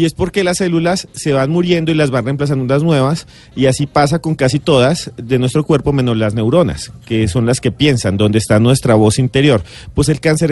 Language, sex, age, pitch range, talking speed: Spanish, male, 40-59, 115-145 Hz, 220 wpm